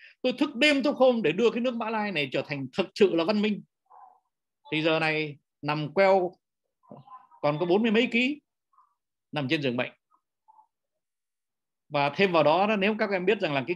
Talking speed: 195 wpm